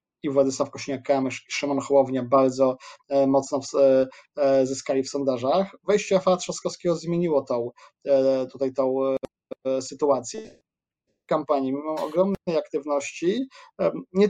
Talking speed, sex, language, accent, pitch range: 105 wpm, male, Polish, native, 135-160 Hz